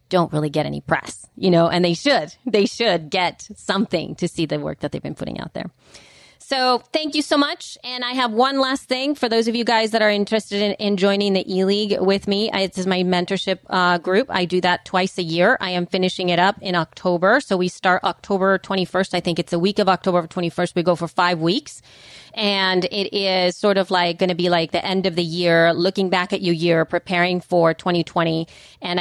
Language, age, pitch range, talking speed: English, 30-49, 170-195 Hz, 230 wpm